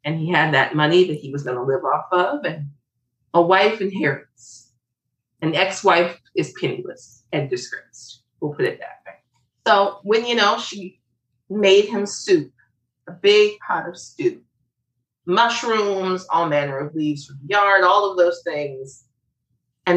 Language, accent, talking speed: English, American, 160 wpm